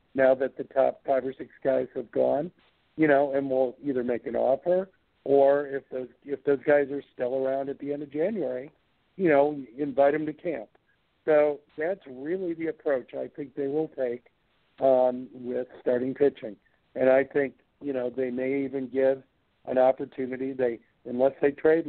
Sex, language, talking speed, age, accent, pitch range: male, English, 185 wpm, 50-69, American, 130-140 Hz